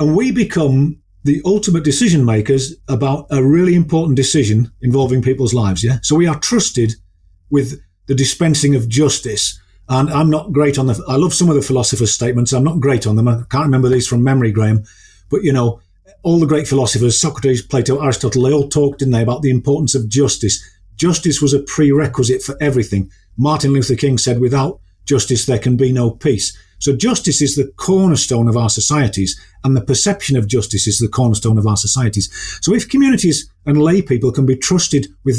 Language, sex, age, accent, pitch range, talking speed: English, male, 40-59, British, 115-150 Hz, 195 wpm